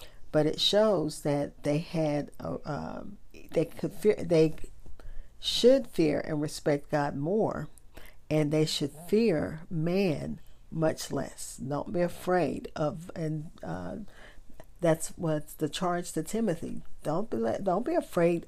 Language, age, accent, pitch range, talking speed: English, 50-69, American, 155-190 Hz, 135 wpm